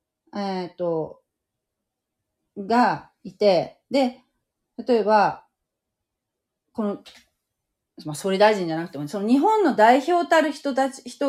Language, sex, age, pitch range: Japanese, female, 40-59, 165-245 Hz